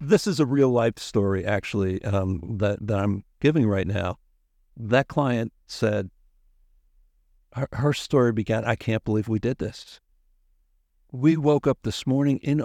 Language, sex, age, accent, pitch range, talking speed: English, male, 60-79, American, 100-135 Hz, 150 wpm